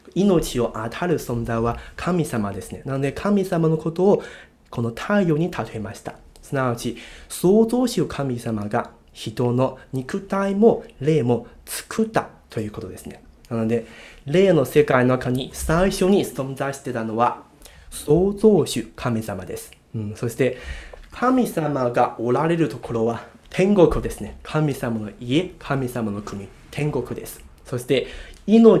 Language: Japanese